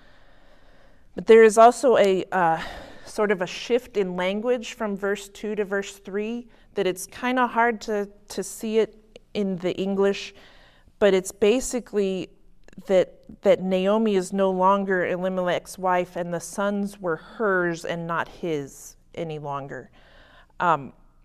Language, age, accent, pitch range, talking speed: English, 40-59, American, 160-200 Hz, 145 wpm